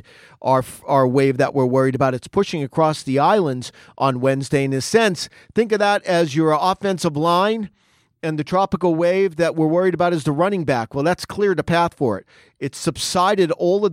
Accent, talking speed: American, 205 wpm